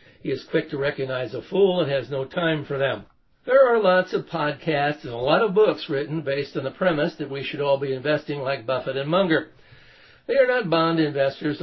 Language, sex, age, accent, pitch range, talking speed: English, male, 60-79, American, 135-165 Hz, 220 wpm